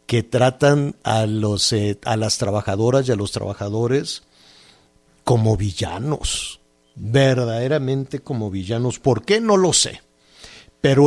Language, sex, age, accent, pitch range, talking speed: Spanish, male, 50-69, Mexican, 105-145 Hz, 125 wpm